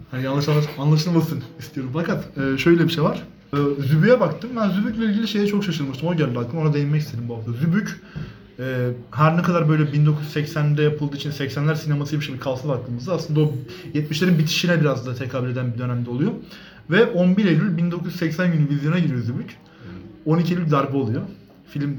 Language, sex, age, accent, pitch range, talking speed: Turkish, male, 30-49, native, 130-165 Hz, 170 wpm